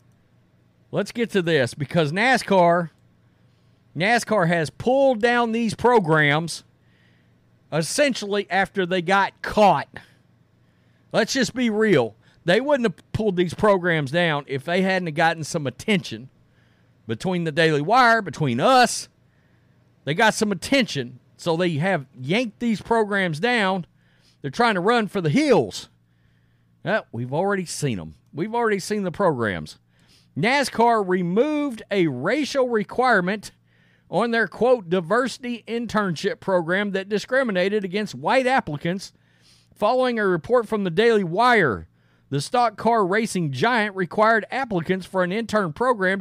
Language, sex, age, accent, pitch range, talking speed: English, male, 40-59, American, 155-230 Hz, 130 wpm